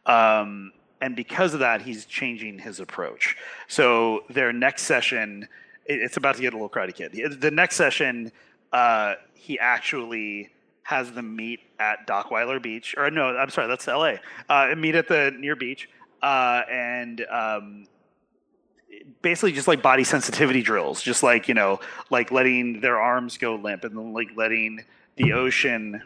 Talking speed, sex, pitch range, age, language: 160 wpm, male, 110-135 Hz, 30-49, English